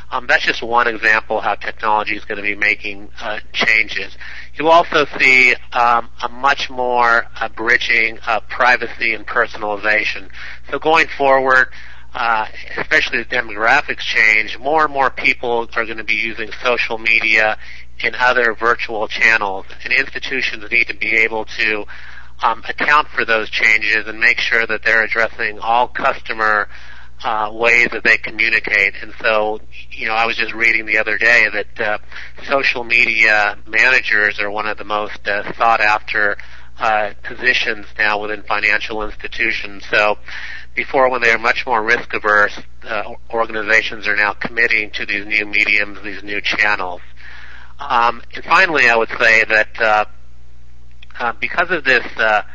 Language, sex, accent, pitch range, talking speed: English, male, American, 105-115 Hz, 155 wpm